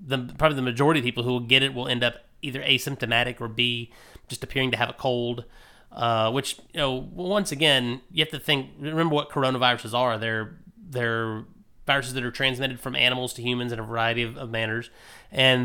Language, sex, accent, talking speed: English, male, American, 205 wpm